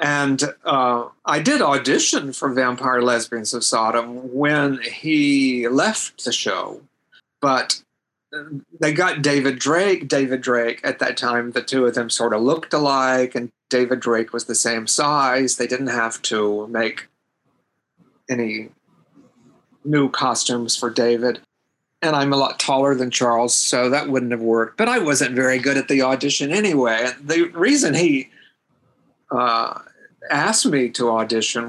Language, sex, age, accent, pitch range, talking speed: English, male, 40-59, American, 120-140 Hz, 150 wpm